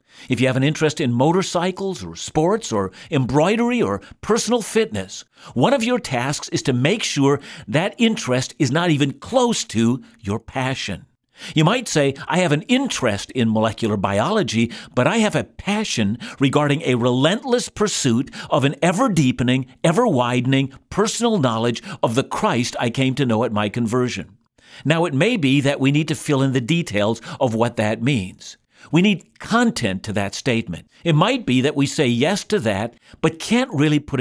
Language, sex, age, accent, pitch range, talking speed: English, male, 50-69, American, 120-180 Hz, 175 wpm